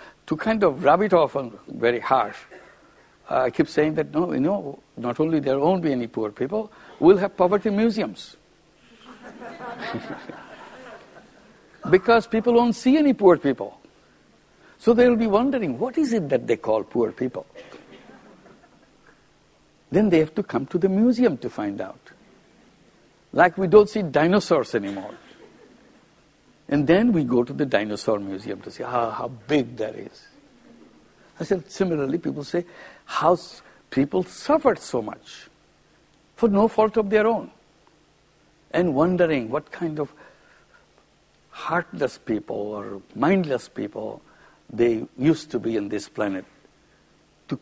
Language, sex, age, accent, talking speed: English, male, 60-79, Indian, 145 wpm